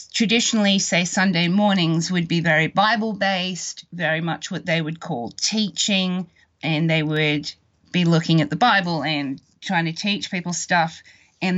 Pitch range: 160-205 Hz